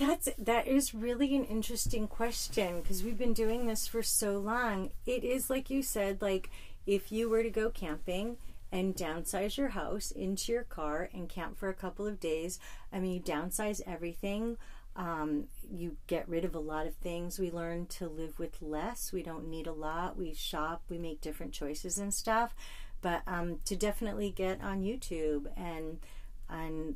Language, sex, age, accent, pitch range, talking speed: English, female, 40-59, American, 165-215 Hz, 185 wpm